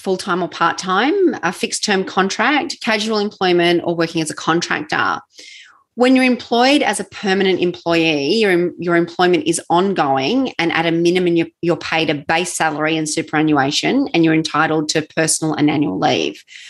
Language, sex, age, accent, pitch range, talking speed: English, female, 30-49, Australian, 155-195 Hz, 160 wpm